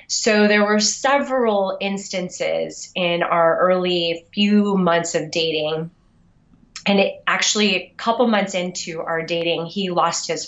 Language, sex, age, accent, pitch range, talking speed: English, female, 20-39, American, 180-230 Hz, 130 wpm